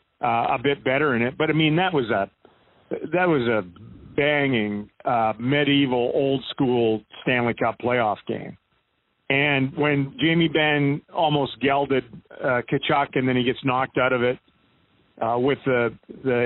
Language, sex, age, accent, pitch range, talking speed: English, male, 40-59, American, 125-155 Hz, 160 wpm